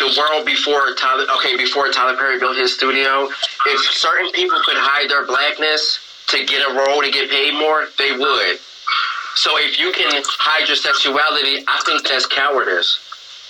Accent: American